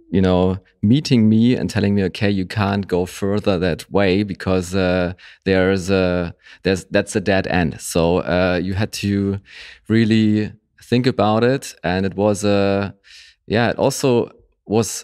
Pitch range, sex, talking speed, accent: 90-105 Hz, male, 165 wpm, German